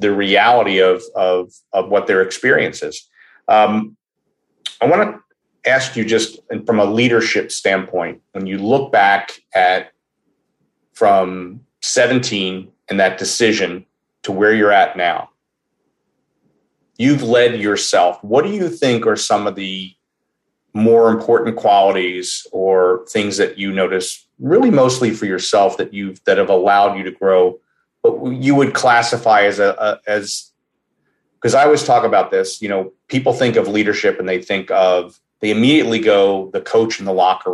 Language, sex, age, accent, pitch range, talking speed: English, male, 40-59, American, 95-120 Hz, 160 wpm